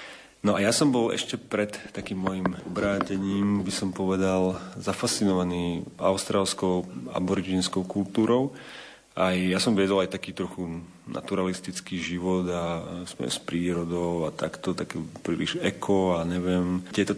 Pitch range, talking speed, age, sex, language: 90-100 Hz, 135 wpm, 40-59, male, Slovak